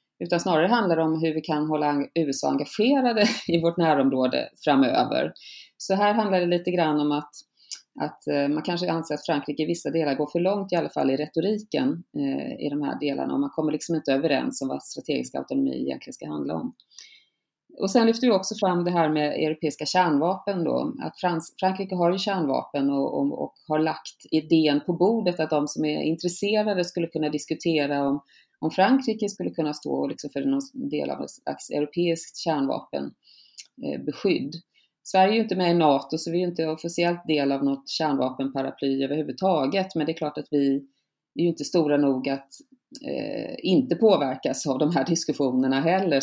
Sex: female